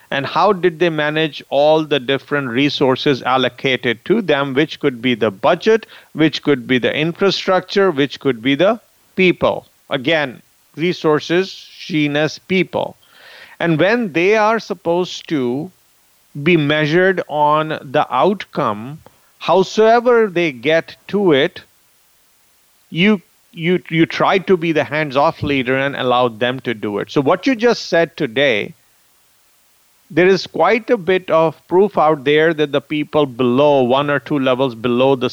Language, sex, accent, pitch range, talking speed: English, male, Indian, 140-175 Hz, 150 wpm